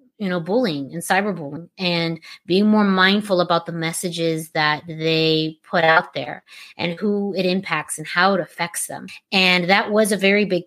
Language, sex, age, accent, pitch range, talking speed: English, female, 30-49, American, 170-200 Hz, 180 wpm